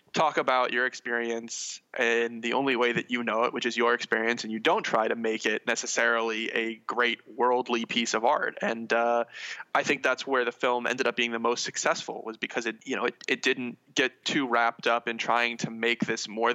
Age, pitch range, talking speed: 20-39, 115-125 Hz, 225 wpm